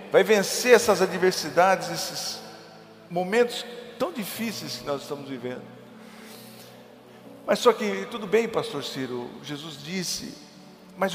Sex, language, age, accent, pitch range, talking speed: male, Portuguese, 50-69, Brazilian, 145-195 Hz, 120 wpm